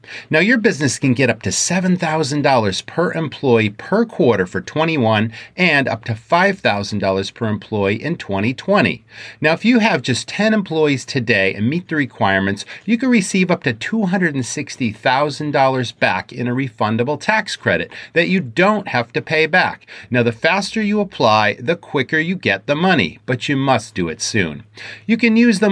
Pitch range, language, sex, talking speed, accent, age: 110-165 Hz, English, male, 175 wpm, American, 40-59